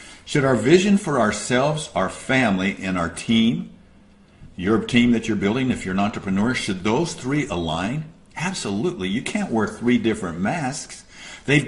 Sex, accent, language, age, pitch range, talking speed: male, American, English, 60-79, 100-150 Hz, 160 wpm